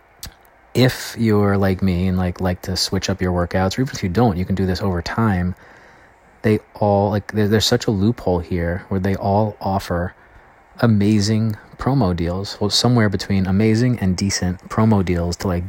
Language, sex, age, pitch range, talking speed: English, male, 20-39, 85-100 Hz, 185 wpm